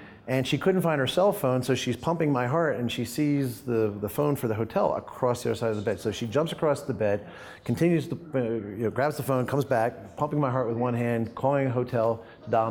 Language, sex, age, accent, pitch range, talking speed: English, male, 40-59, American, 110-145 Hz, 255 wpm